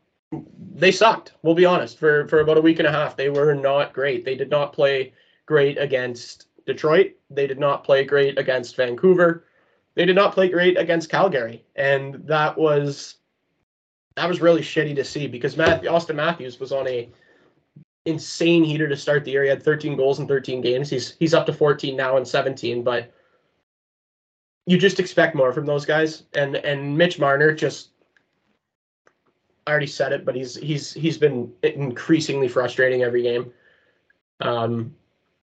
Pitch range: 130-160 Hz